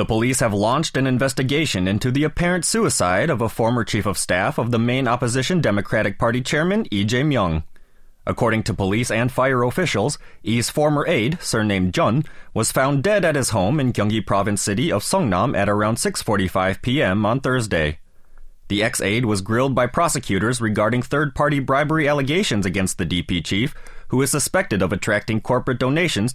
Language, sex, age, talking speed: English, male, 30-49, 170 wpm